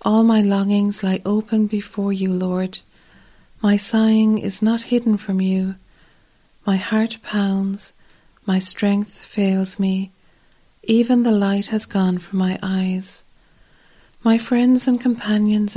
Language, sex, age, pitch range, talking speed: English, female, 40-59, 190-220 Hz, 130 wpm